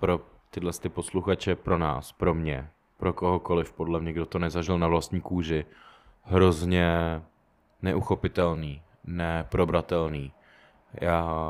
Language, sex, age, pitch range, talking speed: Czech, male, 20-39, 85-100 Hz, 110 wpm